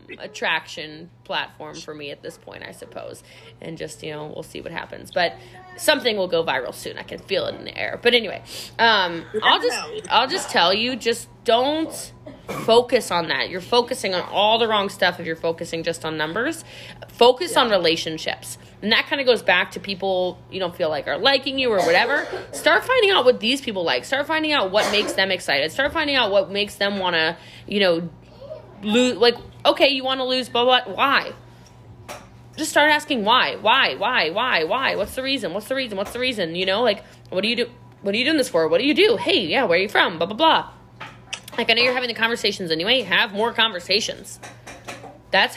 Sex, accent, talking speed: female, American, 220 wpm